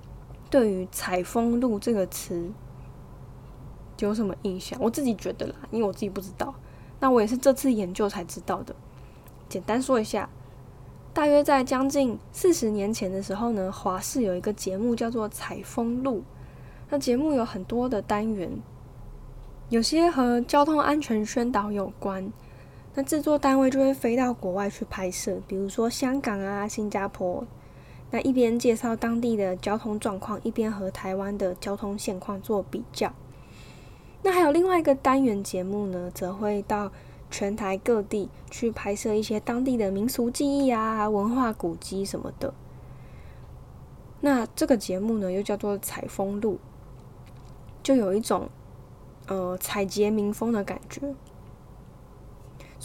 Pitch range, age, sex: 185-240 Hz, 10-29, female